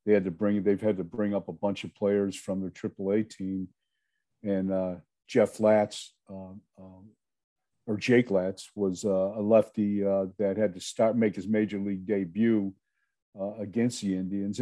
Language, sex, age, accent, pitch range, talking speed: English, male, 50-69, American, 110-140 Hz, 180 wpm